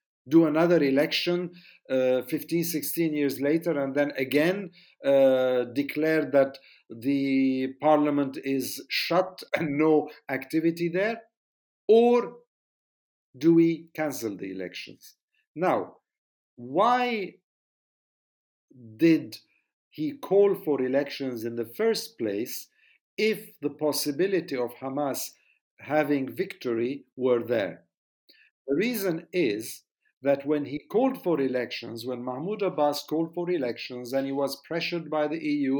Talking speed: 115 wpm